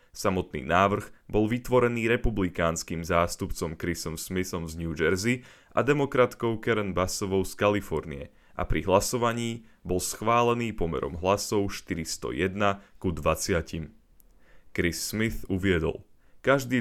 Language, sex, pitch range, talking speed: Slovak, male, 85-110 Hz, 110 wpm